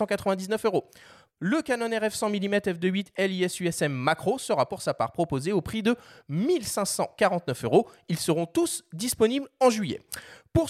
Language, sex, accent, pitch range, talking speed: French, male, French, 170-230 Hz, 145 wpm